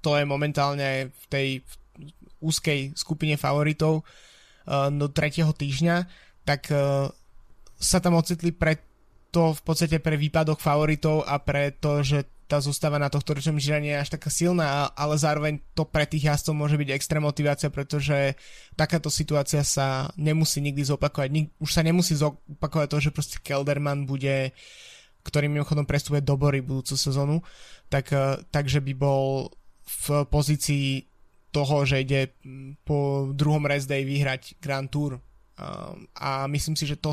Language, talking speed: Slovak, 145 wpm